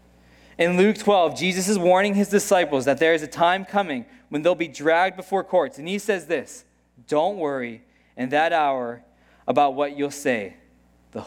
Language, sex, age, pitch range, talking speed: English, male, 20-39, 115-190 Hz, 180 wpm